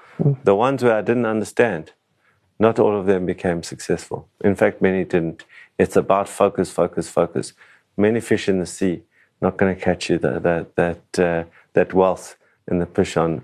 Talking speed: 175 wpm